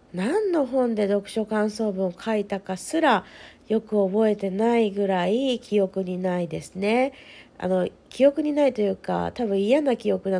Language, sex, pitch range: Japanese, female, 180-245 Hz